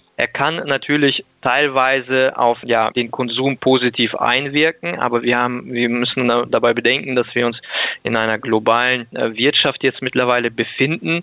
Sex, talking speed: male, 145 wpm